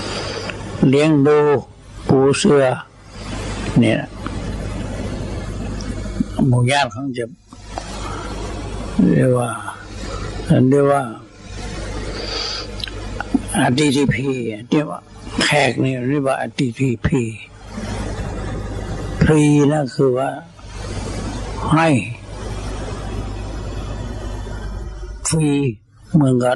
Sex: male